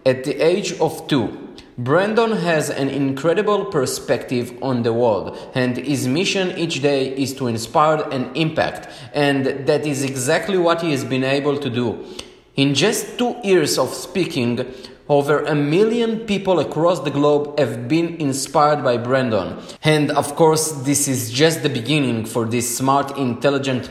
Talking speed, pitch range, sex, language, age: 160 wpm, 125-160 Hz, male, English, 20-39